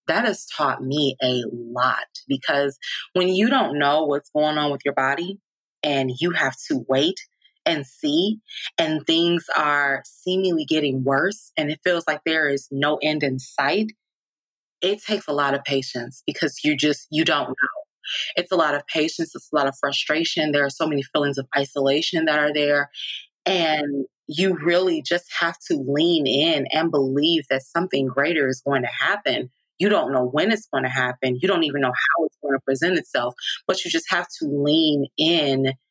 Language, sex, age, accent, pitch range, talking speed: English, female, 20-39, American, 135-170 Hz, 190 wpm